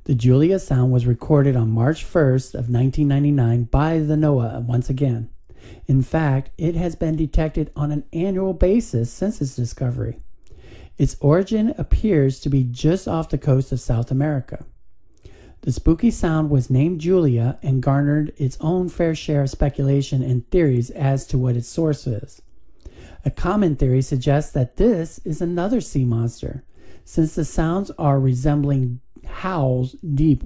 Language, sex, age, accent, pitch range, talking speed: English, male, 50-69, American, 130-160 Hz, 155 wpm